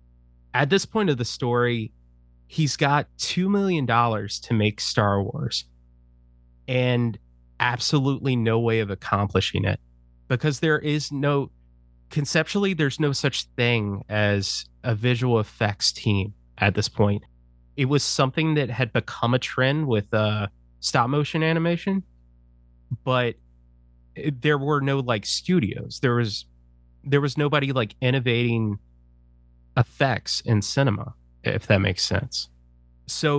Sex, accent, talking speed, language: male, American, 135 wpm, English